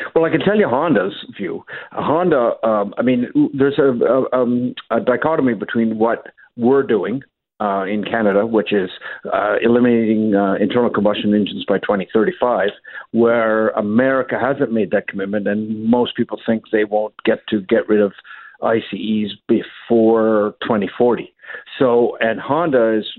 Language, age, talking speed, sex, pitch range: English, 50-69, 150 wpm, male, 105-120 Hz